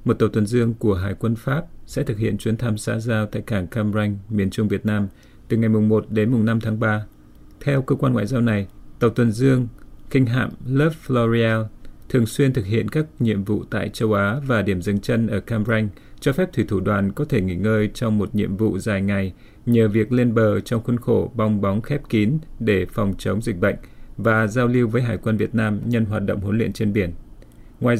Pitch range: 105-120 Hz